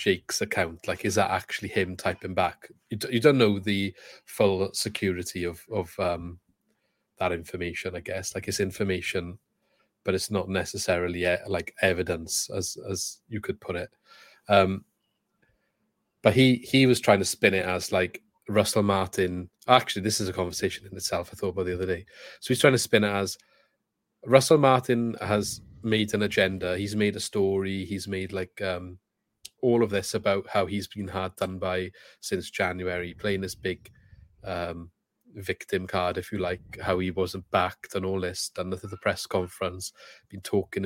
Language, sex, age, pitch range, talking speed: English, male, 30-49, 90-105 Hz, 175 wpm